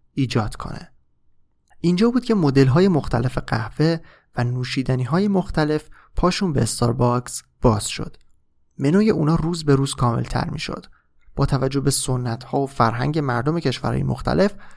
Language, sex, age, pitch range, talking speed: Persian, male, 30-49, 120-160 Hz, 145 wpm